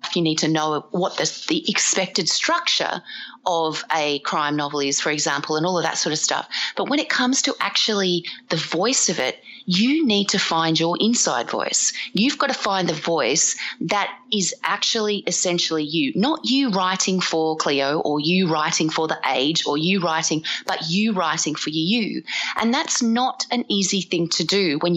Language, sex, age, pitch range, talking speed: English, female, 30-49, 165-215 Hz, 190 wpm